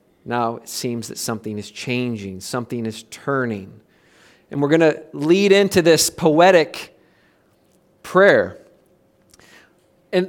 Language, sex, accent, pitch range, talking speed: English, male, American, 155-215 Hz, 115 wpm